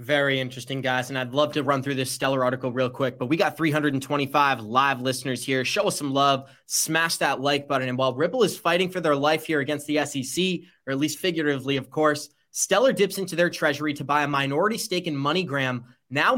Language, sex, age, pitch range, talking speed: English, male, 20-39, 140-175 Hz, 220 wpm